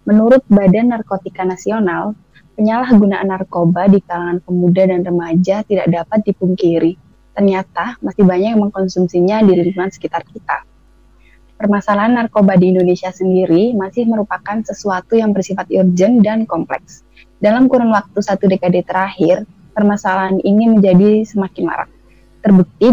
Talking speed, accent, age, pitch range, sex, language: 125 wpm, native, 20-39, 180-210 Hz, female, Indonesian